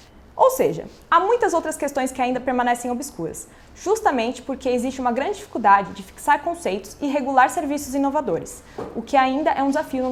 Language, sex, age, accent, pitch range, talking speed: Portuguese, female, 20-39, Brazilian, 225-310 Hz, 180 wpm